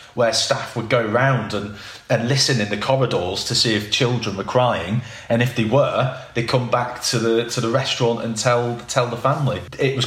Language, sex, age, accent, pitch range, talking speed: English, male, 30-49, British, 105-130 Hz, 215 wpm